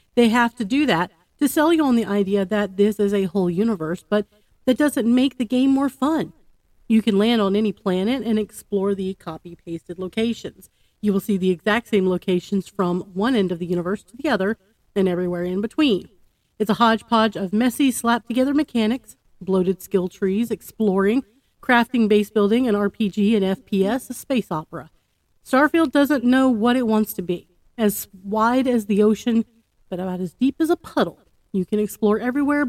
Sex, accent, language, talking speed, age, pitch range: female, American, English, 185 wpm, 40-59, 195-260 Hz